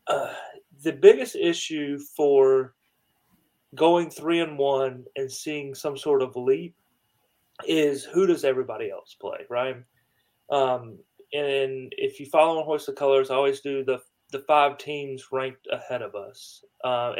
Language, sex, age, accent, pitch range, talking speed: English, male, 30-49, American, 125-165 Hz, 150 wpm